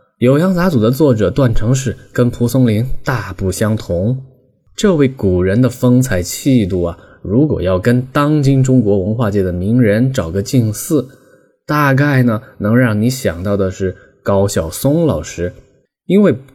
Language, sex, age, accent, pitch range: Chinese, male, 20-39, native, 100-130 Hz